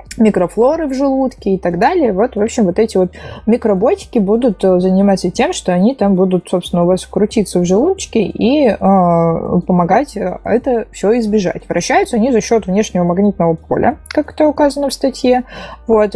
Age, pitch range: 20-39, 175-220 Hz